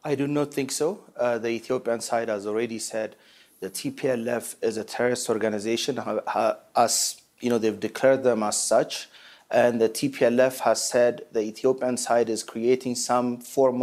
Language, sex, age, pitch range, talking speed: English, male, 30-49, 115-130 Hz, 175 wpm